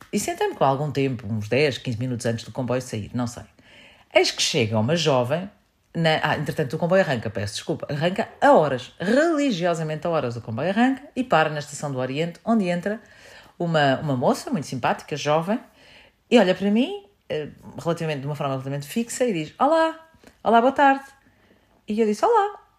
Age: 40-59